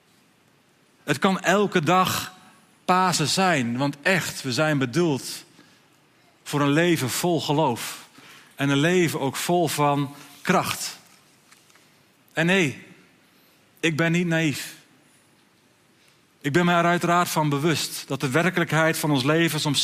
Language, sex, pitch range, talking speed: Dutch, male, 145-170 Hz, 130 wpm